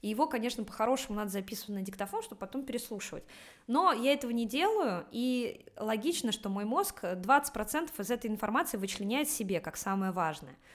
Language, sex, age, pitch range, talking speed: Russian, female, 20-39, 200-260 Hz, 165 wpm